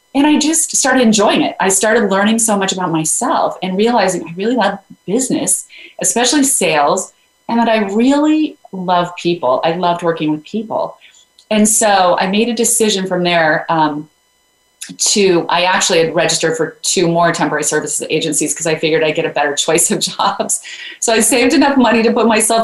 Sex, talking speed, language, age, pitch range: female, 185 wpm, English, 30-49, 155-205 Hz